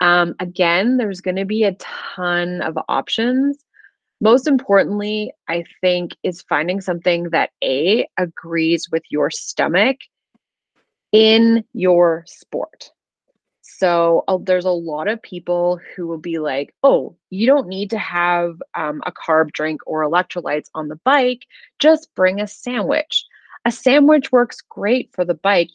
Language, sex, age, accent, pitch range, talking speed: English, female, 30-49, American, 165-245 Hz, 145 wpm